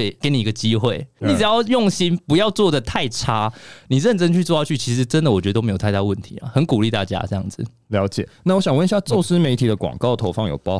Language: Chinese